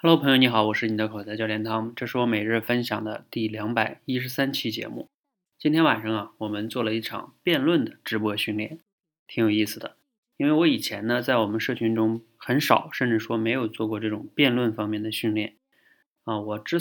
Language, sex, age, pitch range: Chinese, male, 20-39, 110-145 Hz